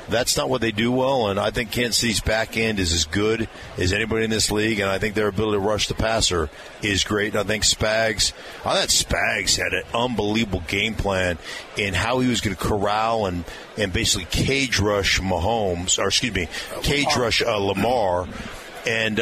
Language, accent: English, American